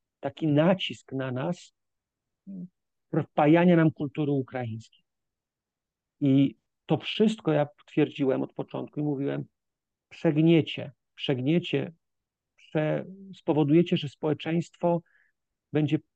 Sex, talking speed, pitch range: male, 85 wpm, 130-165 Hz